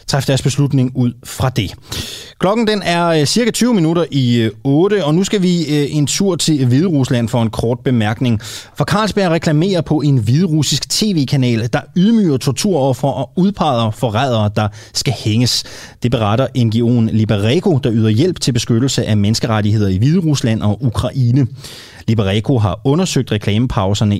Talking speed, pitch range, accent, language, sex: 150 wpm, 110-140 Hz, native, Danish, male